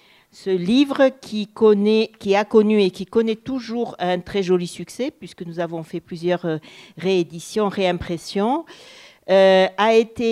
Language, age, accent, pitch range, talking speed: French, 50-69, French, 180-225 Hz, 145 wpm